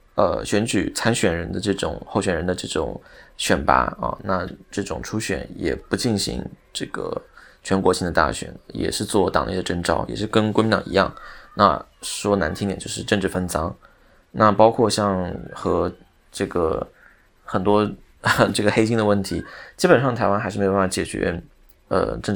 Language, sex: Chinese, male